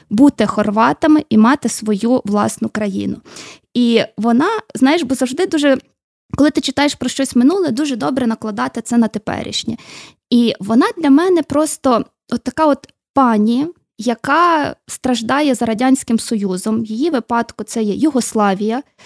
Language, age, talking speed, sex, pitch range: Ukrainian, 20-39, 140 wpm, female, 230-285 Hz